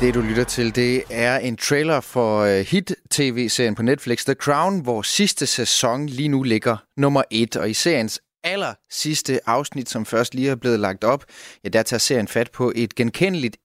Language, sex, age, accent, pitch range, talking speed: Danish, male, 30-49, native, 110-135 Hz, 190 wpm